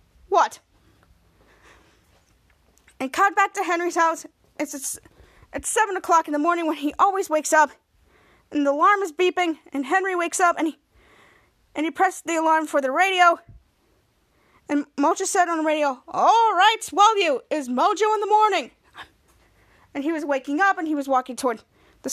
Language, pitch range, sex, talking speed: English, 295-390 Hz, female, 175 wpm